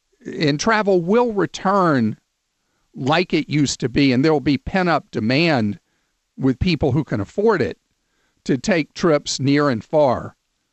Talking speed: 145 wpm